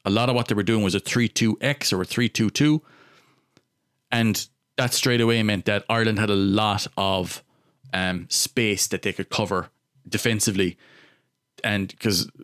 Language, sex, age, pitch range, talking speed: English, male, 30-49, 105-130 Hz, 160 wpm